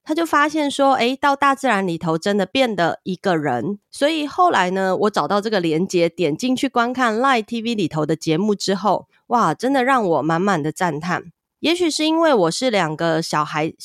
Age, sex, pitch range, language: 20-39, female, 175-250 Hz, Chinese